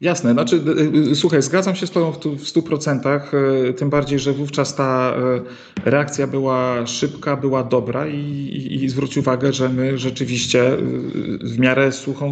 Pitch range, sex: 120-145 Hz, male